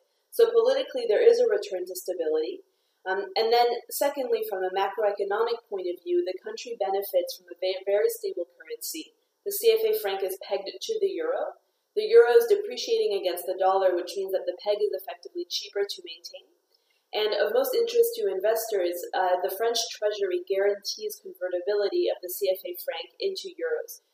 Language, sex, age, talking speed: English, female, 30-49, 170 wpm